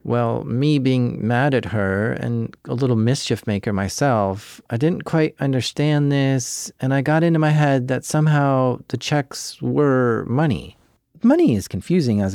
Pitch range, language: 120-165 Hz, English